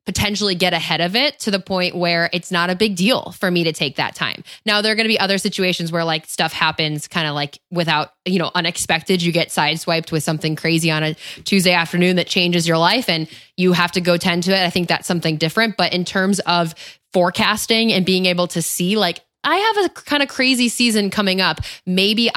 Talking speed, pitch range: 235 wpm, 170-200 Hz